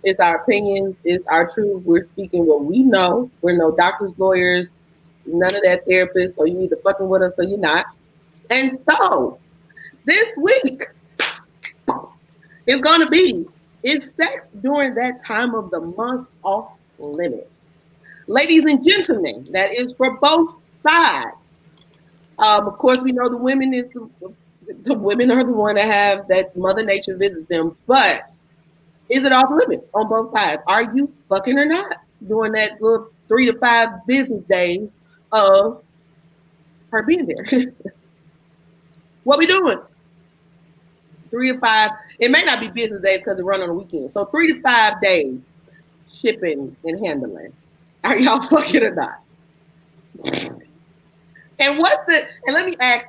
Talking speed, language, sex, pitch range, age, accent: 155 wpm, English, female, 170-255 Hz, 30-49, American